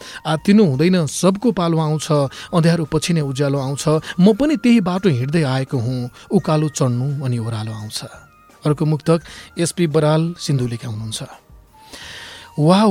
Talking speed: 150 wpm